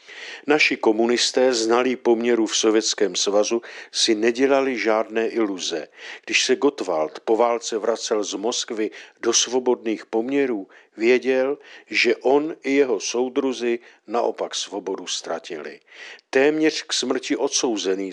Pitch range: 115-165 Hz